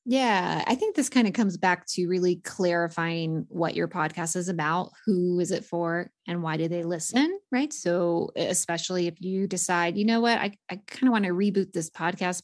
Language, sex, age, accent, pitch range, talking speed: English, female, 20-39, American, 175-225 Hz, 210 wpm